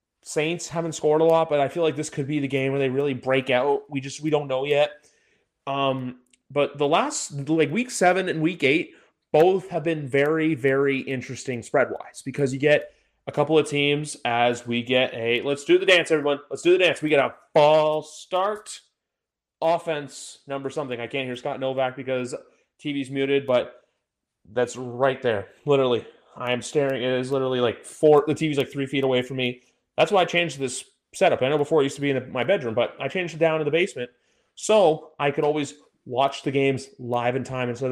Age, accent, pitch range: 30-49, American, 130-155 Hz